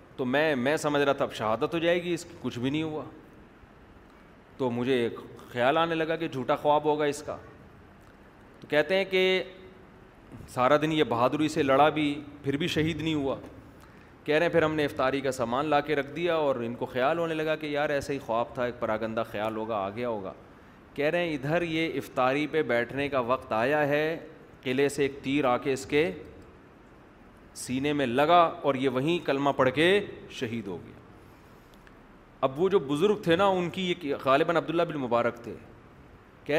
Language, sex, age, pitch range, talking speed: Urdu, male, 30-49, 135-180 Hz, 205 wpm